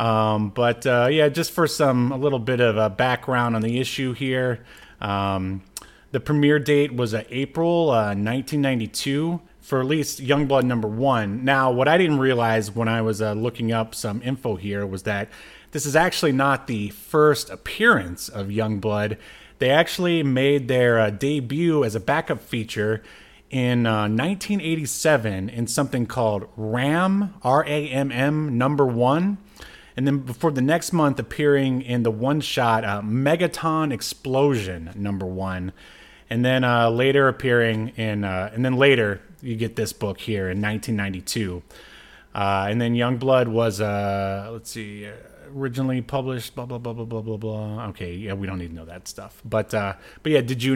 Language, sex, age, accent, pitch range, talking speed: English, male, 30-49, American, 110-135 Hz, 170 wpm